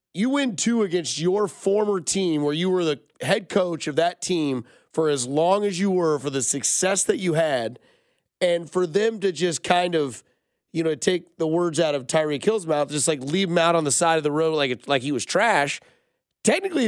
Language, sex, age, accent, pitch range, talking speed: English, male, 30-49, American, 150-190 Hz, 225 wpm